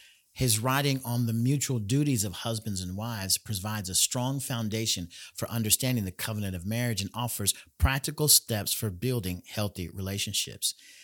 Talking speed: 150 wpm